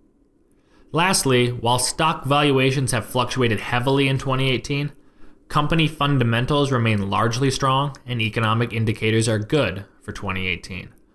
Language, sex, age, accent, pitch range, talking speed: English, male, 20-39, American, 110-150 Hz, 115 wpm